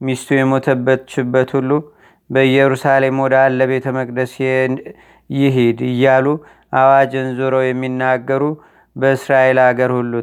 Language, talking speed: Amharic, 95 wpm